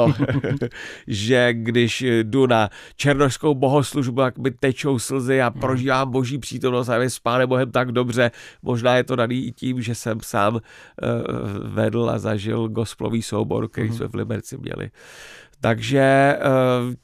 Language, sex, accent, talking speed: Czech, male, native, 145 wpm